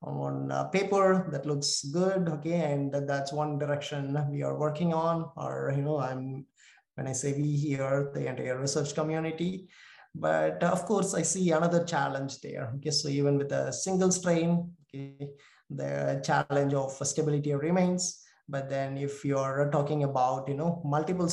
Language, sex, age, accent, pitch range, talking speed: English, male, 20-39, Indian, 135-160 Hz, 165 wpm